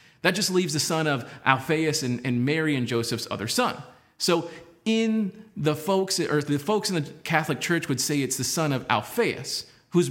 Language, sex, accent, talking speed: English, male, American, 195 wpm